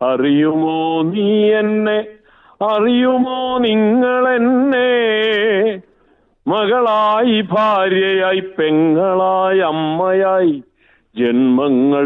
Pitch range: 145-210 Hz